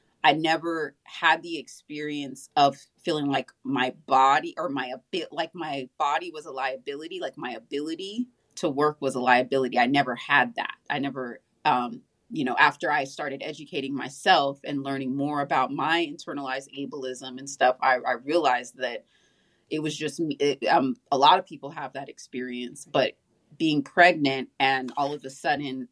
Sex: female